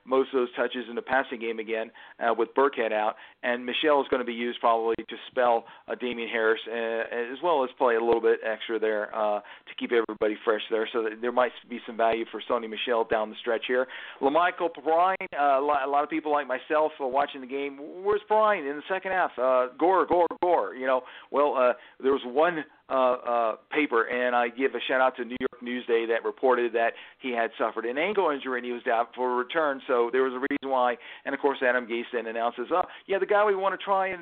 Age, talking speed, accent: 50-69, 240 wpm, American